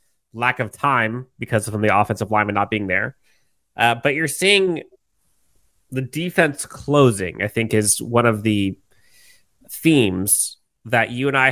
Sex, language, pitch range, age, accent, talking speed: male, English, 110-135 Hz, 30-49, American, 150 wpm